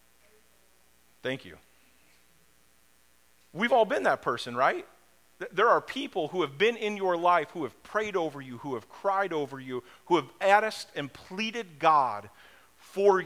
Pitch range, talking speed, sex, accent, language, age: 160-220 Hz, 155 wpm, male, American, English, 40-59